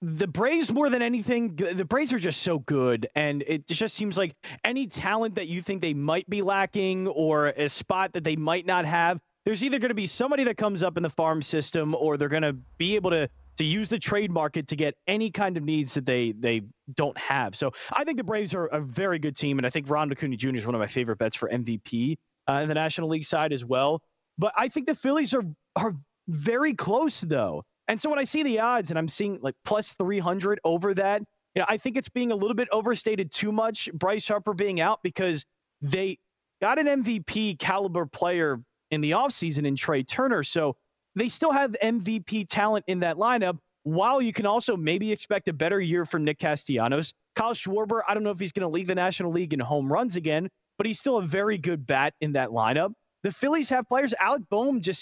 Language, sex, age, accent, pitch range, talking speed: English, male, 30-49, American, 155-215 Hz, 230 wpm